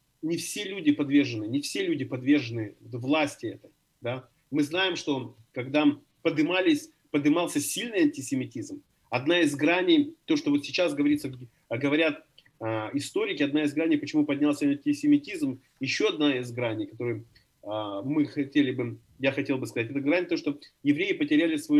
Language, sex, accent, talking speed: Ukrainian, male, native, 150 wpm